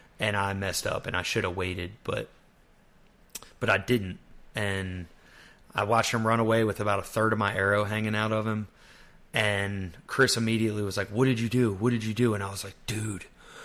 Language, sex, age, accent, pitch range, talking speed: English, male, 20-39, American, 100-120 Hz, 210 wpm